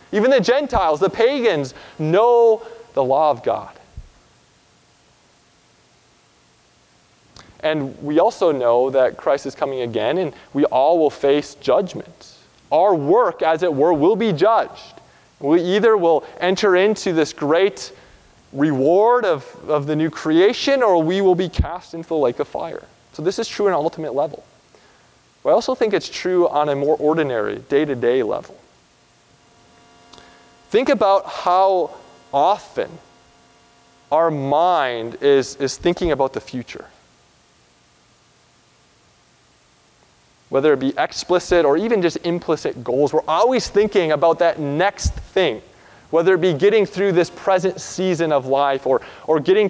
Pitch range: 135-180 Hz